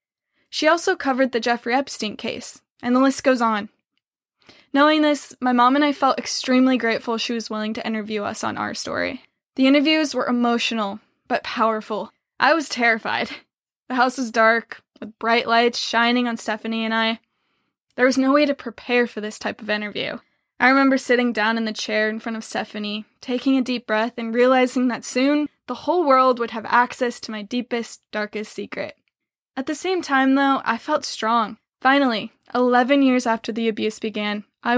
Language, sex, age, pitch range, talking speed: English, female, 10-29, 220-260 Hz, 185 wpm